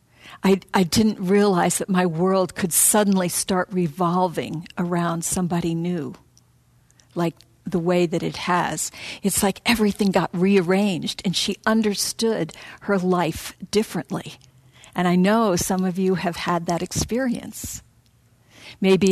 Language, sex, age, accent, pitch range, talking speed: English, female, 50-69, American, 175-210 Hz, 130 wpm